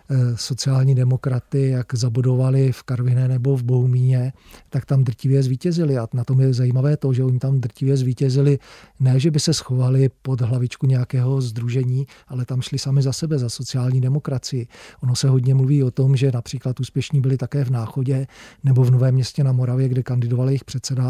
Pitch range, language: 130-140 Hz, Czech